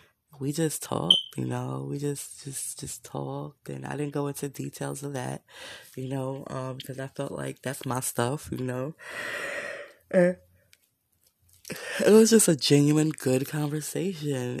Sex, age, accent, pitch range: female, 20-39, American, 115-150 Hz